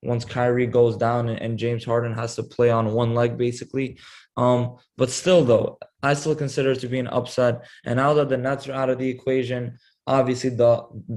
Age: 20-39